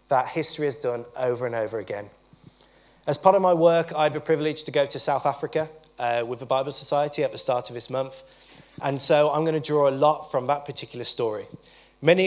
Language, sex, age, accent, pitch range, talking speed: English, male, 20-39, British, 130-160 Hz, 225 wpm